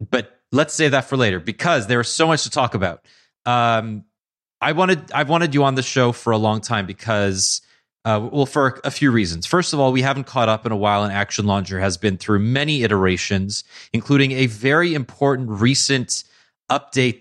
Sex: male